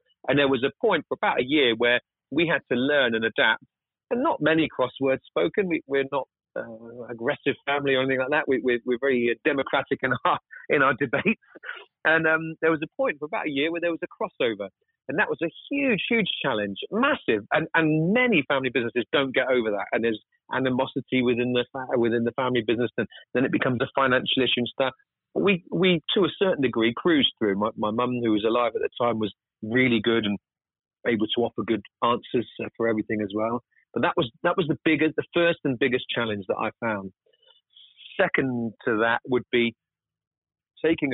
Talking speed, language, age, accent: 210 wpm, English, 40-59, British